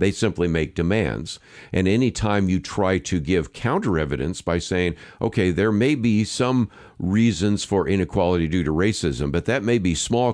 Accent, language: American, English